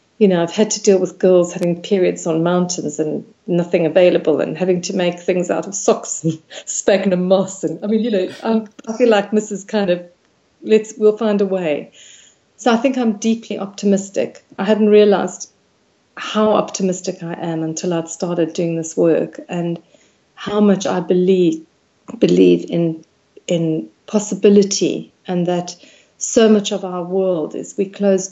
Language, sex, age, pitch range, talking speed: English, female, 40-59, 175-205 Hz, 170 wpm